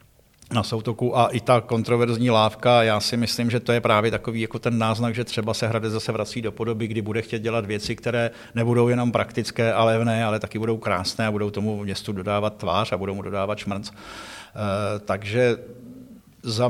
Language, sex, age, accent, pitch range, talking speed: Czech, male, 50-69, native, 105-120 Hz, 195 wpm